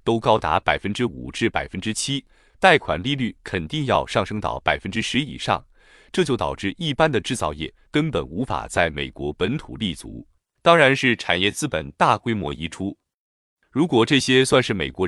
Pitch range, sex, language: 95-135 Hz, male, Chinese